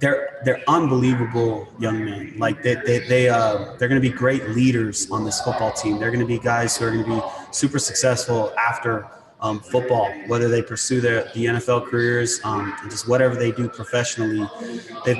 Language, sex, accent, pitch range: English, male, American, 110-125 Hz